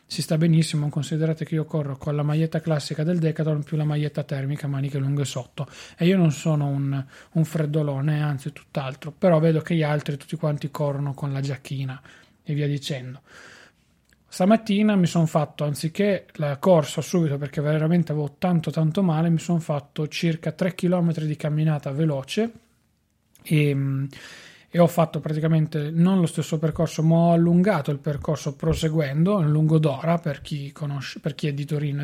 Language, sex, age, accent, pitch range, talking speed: Italian, male, 30-49, native, 145-170 Hz, 170 wpm